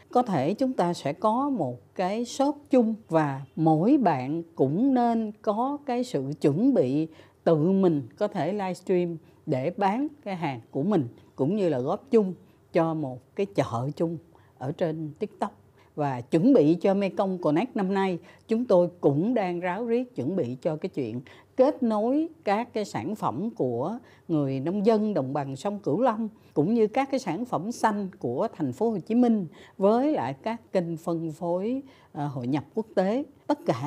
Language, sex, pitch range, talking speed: Vietnamese, female, 145-210 Hz, 180 wpm